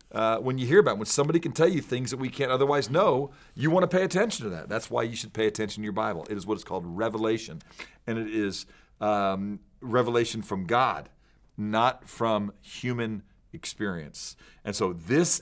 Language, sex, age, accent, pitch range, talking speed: English, male, 40-59, American, 100-130 Hz, 200 wpm